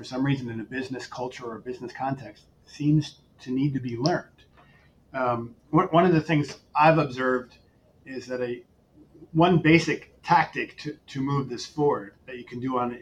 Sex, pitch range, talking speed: male, 120-150 Hz, 190 wpm